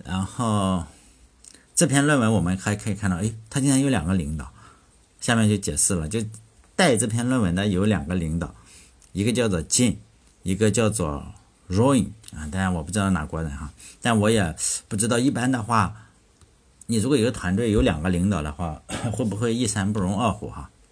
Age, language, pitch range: 50-69, Chinese, 90-115 Hz